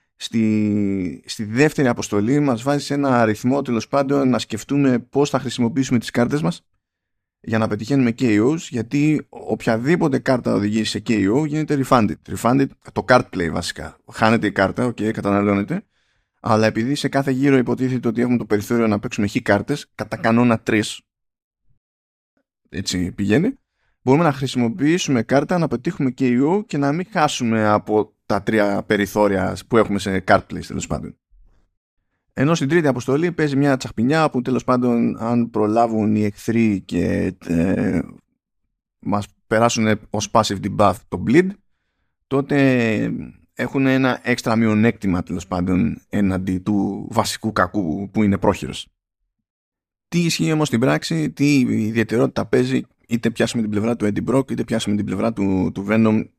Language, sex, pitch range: Greek, male, 100-130 Hz